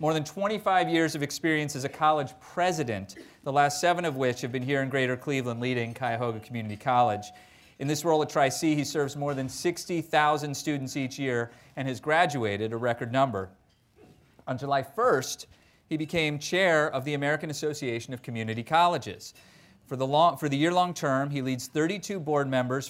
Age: 30-49